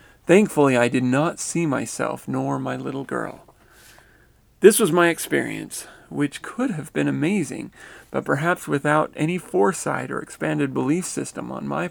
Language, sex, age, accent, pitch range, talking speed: English, male, 40-59, American, 125-155 Hz, 150 wpm